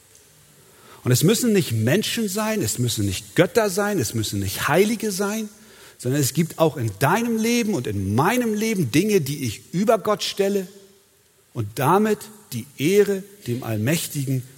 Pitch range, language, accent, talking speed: 110-165 Hz, German, German, 160 wpm